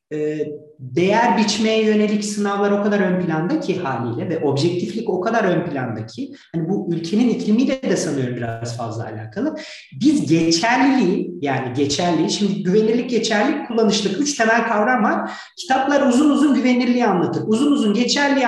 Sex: male